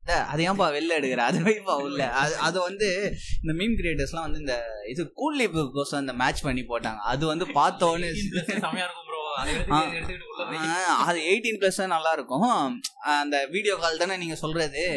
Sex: male